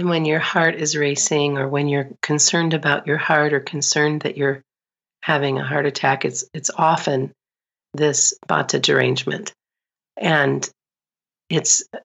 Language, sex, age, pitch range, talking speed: English, female, 40-59, 140-155 Hz, 140 wpm